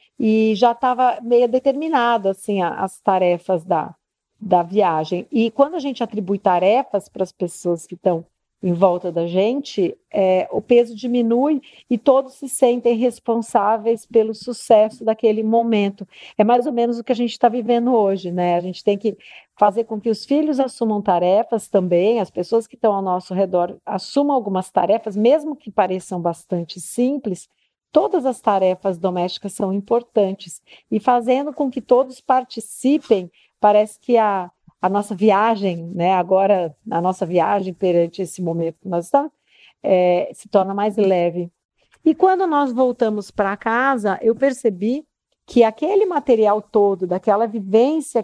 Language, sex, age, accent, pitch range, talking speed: Portuguese, female, 50-69, Brazilian, 185-245 Hz, 155 wpm